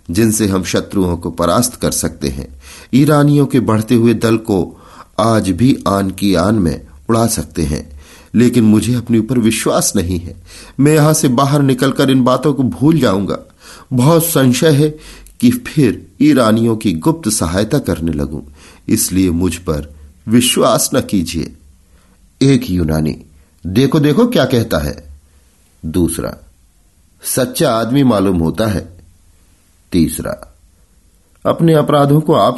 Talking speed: 140 wpm